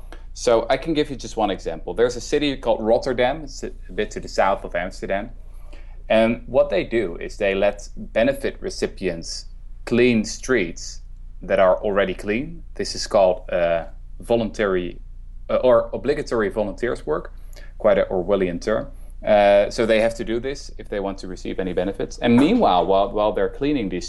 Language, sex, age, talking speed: English, male, 20-39, 175 wpm